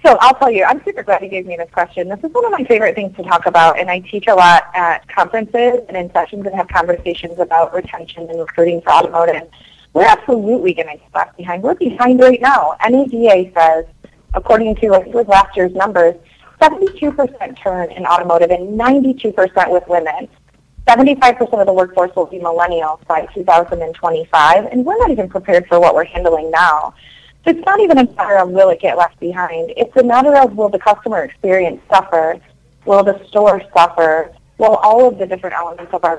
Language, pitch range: English, 170-230 Hz